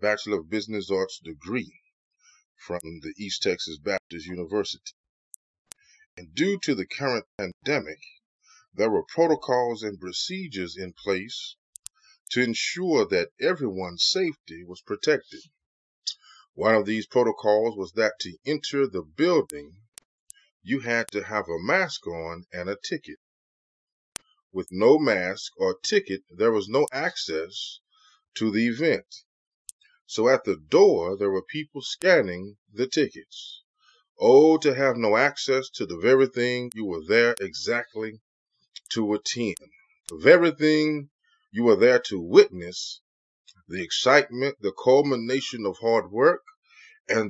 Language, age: English, 30-49